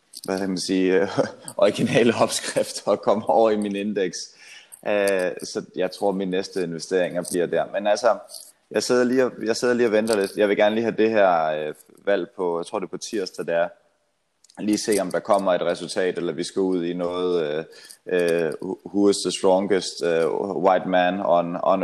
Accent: native